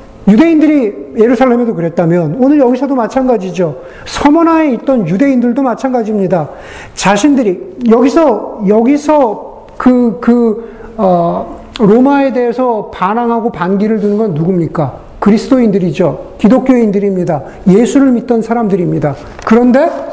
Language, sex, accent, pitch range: Korean, male, native, 200-255 Hz